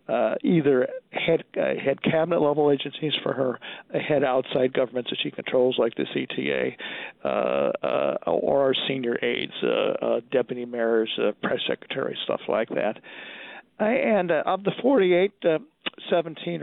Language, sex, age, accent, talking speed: English, male, 50-69, American, 155 wpm